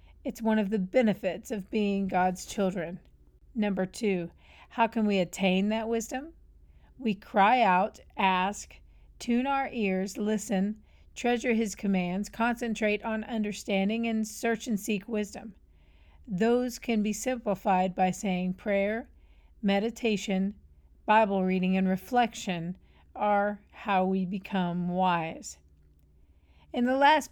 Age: 40-59